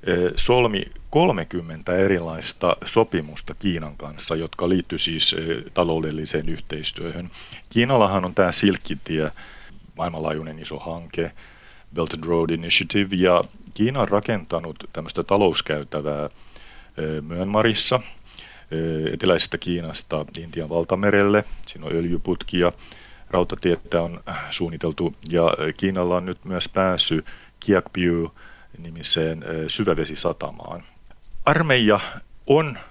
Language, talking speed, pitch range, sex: Finnish, 95 wpm, 80-100 Hz, male